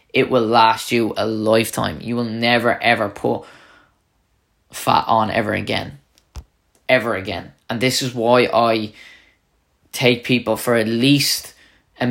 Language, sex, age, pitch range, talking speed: English, male, 10-29, 110-125 Hz, 140 wpm